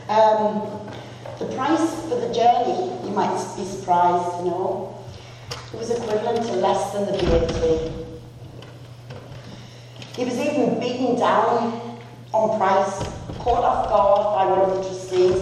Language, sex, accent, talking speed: English, female, British, 130 wpm